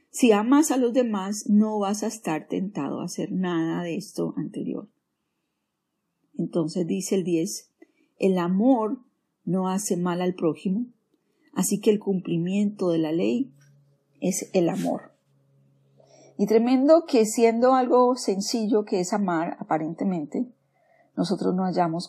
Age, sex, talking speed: 40-59, female, 135 wpm